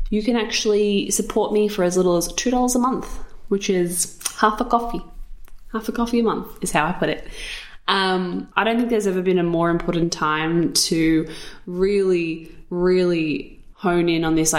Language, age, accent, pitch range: English, 20-39, Australian, 165-215 Hz